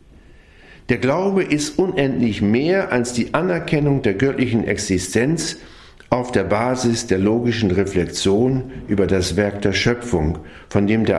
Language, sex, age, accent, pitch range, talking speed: German, male, 50-69, German, 95-135 Hz, 135 wpm